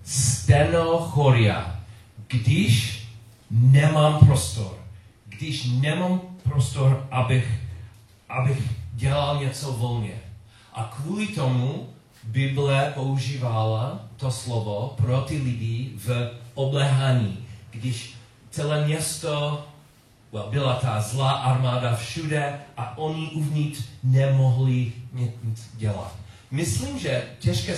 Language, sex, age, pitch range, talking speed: Czech, male, 40-59, 110-135 Hz, 95 wpm